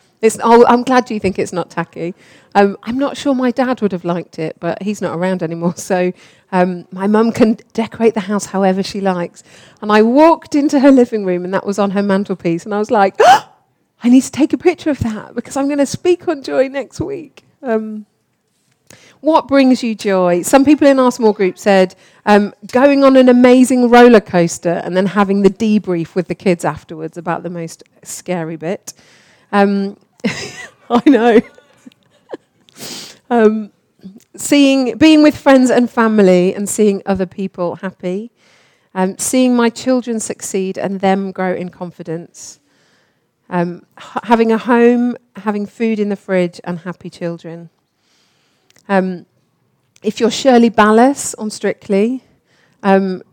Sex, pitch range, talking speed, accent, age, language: female, 180-240 Hz, 170 wpm, British, 40-59, English